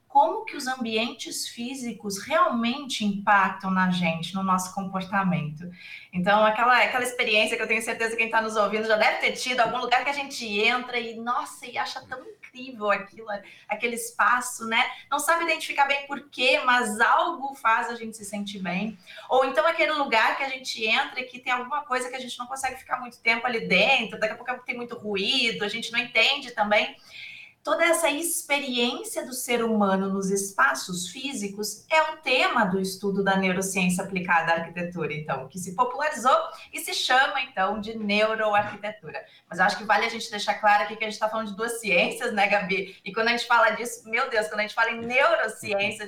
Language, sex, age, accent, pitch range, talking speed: Portuguese, female, 20-39, Brazilian, 200-255 Hz, 205 wpm